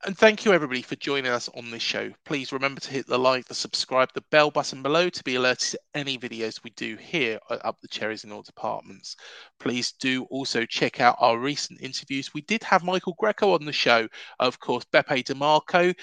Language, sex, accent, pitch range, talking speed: English, male, British, 125-185 Hz, 215 wpm